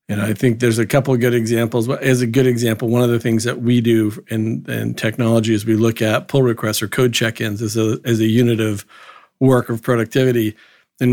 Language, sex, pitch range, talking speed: English, male, 115-130 Hz, 220 wpm